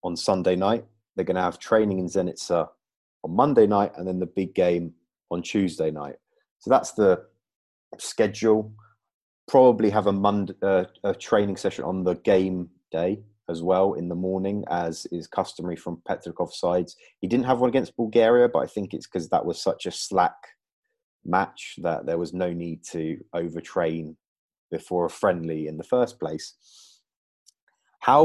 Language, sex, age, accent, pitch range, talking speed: English, male, 30-49, British, 85-105 Hz, 165 wpm